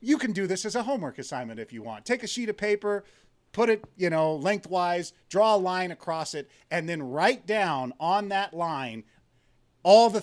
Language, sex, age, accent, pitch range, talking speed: English, male, 30-49, American, 135-200 Hz, 205 wpm